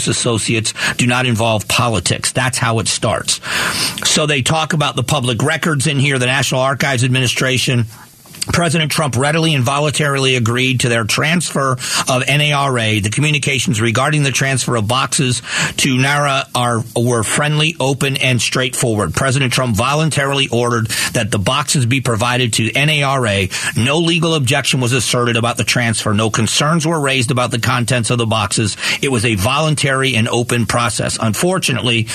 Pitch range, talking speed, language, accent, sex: 120-145 Hz, 160 wpm, English, American, male